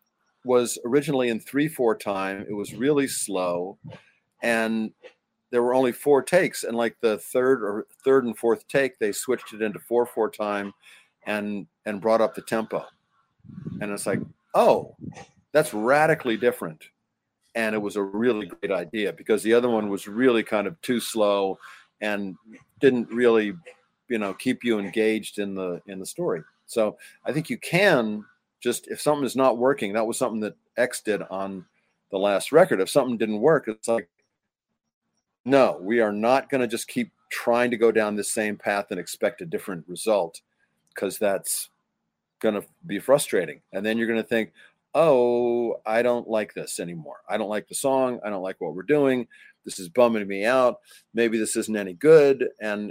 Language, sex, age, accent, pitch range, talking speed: English, male, 50-69, American, 105-125 Hz, 185 wpm